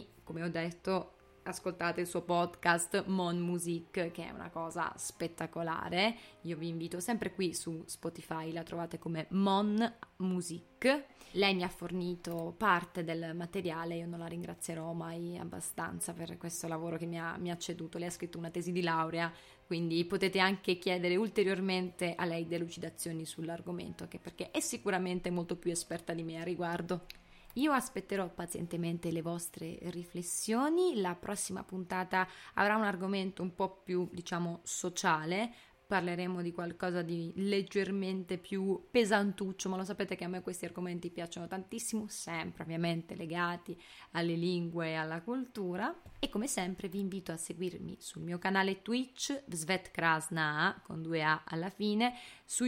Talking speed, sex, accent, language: 155 wpm, female, native, Italian